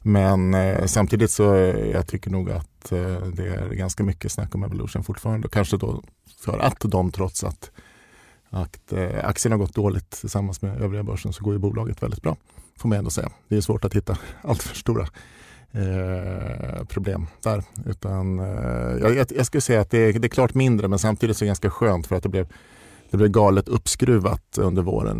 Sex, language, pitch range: male, Swedish, 95-110 Hz